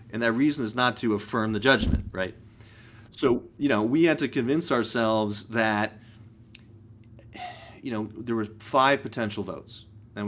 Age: 30-49